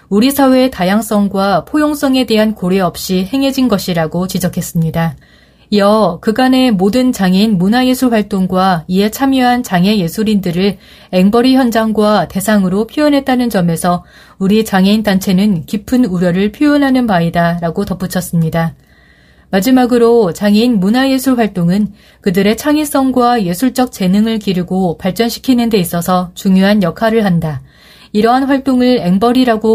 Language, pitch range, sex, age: Korean, 180-240 Hz, female, 30-49